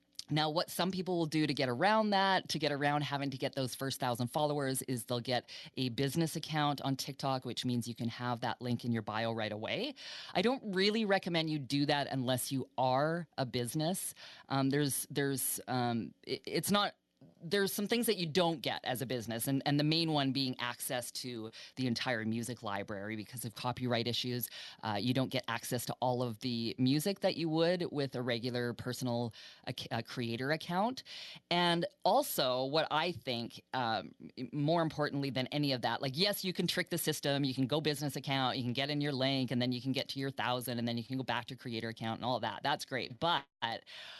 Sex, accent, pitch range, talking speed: female, American, 125-155 Hz, 215 wpm